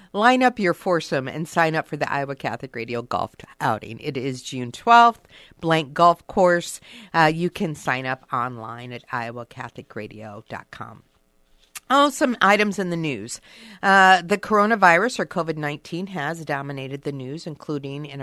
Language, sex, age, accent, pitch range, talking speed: English, female, 50-69, American, 140-200 Hz, 150 wpm